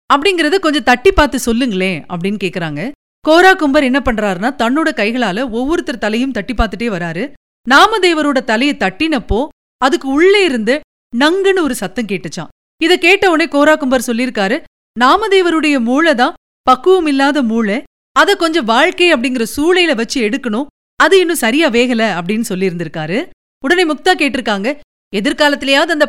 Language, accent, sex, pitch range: Tamil, native, female, 235-315 Hz